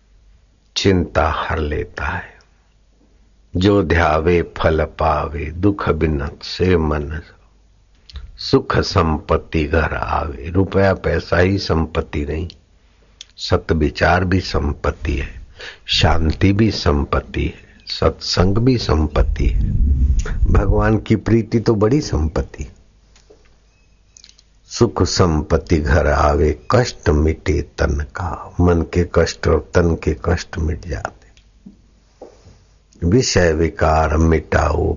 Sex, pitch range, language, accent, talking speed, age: male, 75-95 Hz, Hindi, native, 75 wpm, 60-79